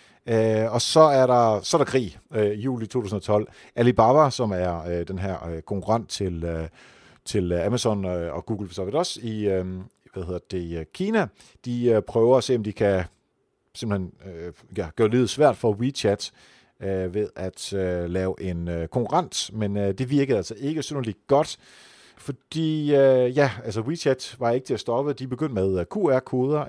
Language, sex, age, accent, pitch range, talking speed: Danish, male, 40-59, native, 95-130 Hz, 185 wpm